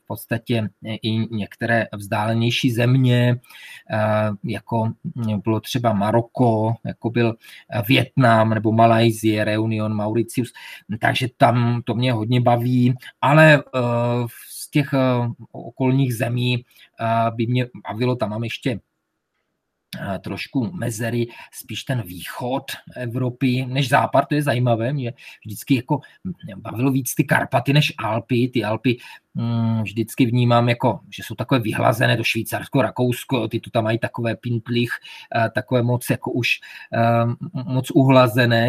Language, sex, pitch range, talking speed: Czech, male, 115-130 Hz, 120 wpm